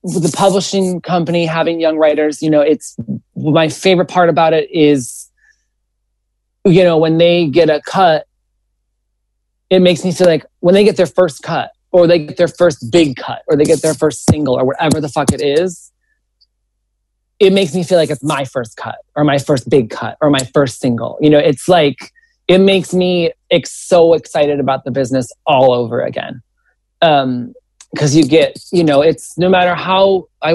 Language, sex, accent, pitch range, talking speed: English, male, American, 135-170 Hz, 190 wpm